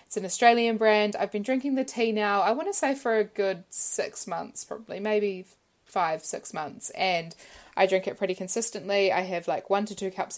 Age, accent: 20-39, Australian